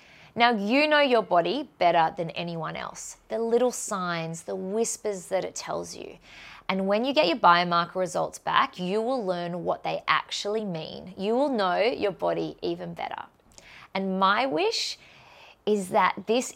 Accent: Australian